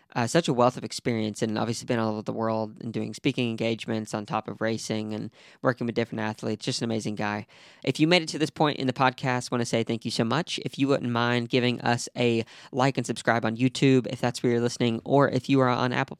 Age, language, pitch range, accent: 10-29, English, 115-135 Hz, American